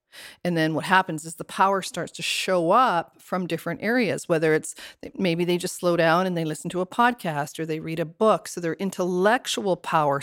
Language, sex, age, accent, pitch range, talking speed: English, female, 40-59, American, 170-200 Hz, 210 wpm